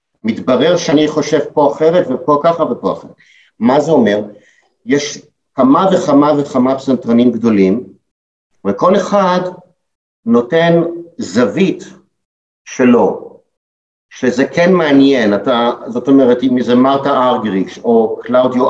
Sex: male